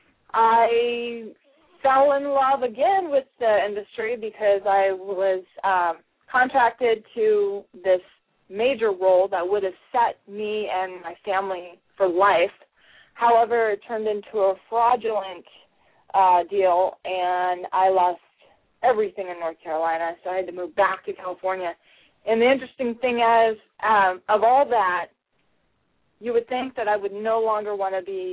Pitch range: 185-225 Hz